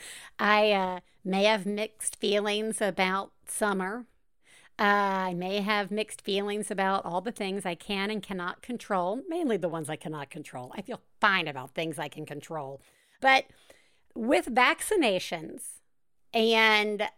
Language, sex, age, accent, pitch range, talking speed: English, female, 50-69, American, 195-255 Hz, 145 wpm